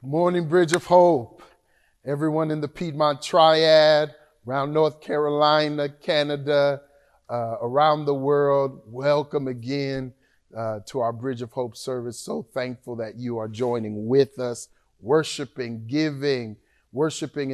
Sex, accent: male, American